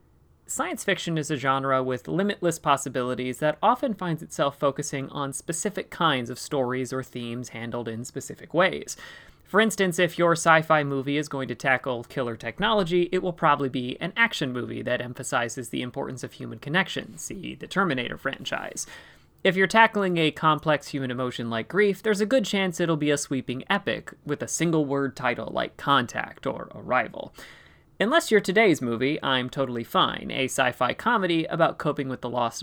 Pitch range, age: 130-170 Hz, 30-49